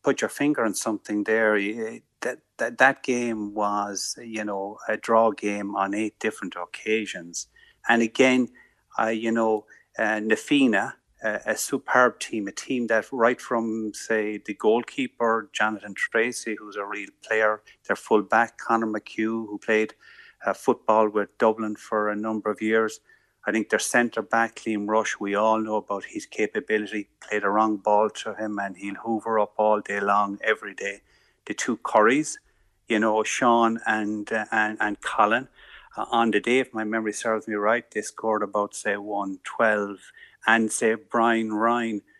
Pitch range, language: 105-115 Hz, English